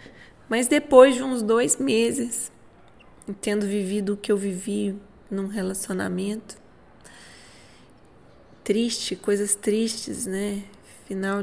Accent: Brazilian